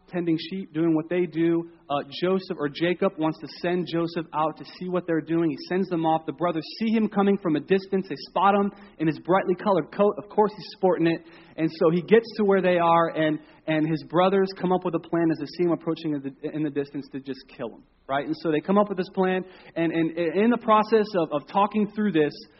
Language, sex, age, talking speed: English, male, 30-49, 250 wpm